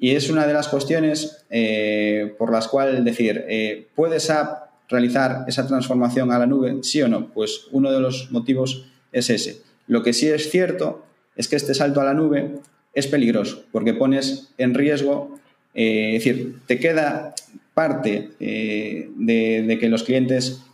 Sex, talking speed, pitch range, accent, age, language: male, 170 wpm, 115-150 Hz, Spanish, 30-49, Spanish